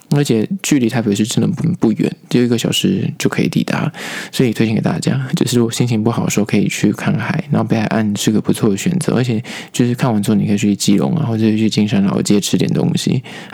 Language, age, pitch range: Chinese, 20-39, 110-130 Hz